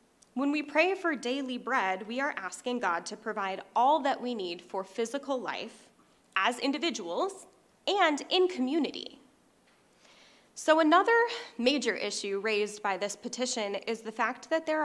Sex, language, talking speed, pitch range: female, English, 150 wpm, 205-275 Hz